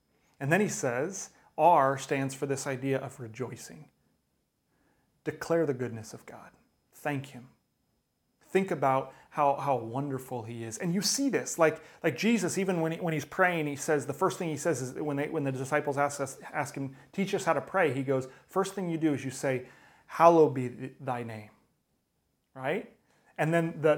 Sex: male